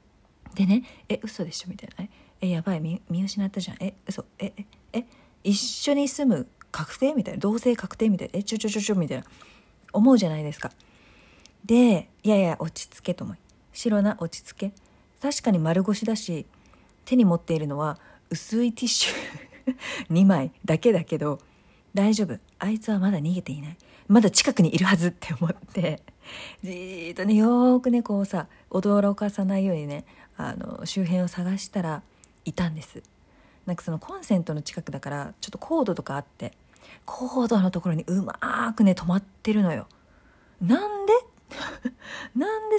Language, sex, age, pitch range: Japanese, female, 40-59, 170-230 Hz